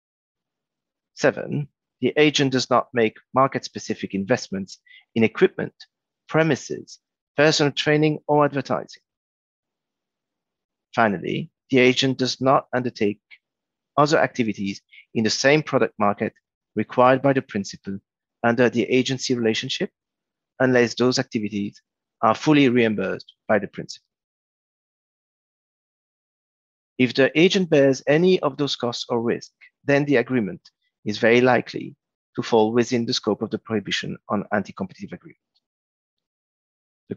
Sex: male